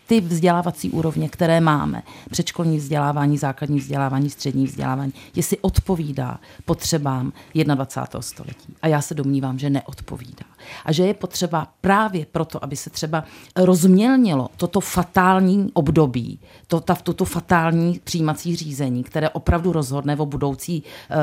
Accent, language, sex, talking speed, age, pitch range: native, Czech, female, 125 wpm, 40-59, 140-175 Hz